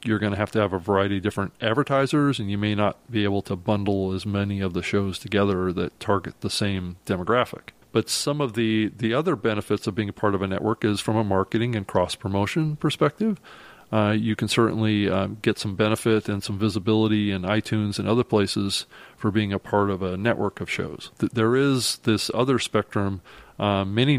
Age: 30-49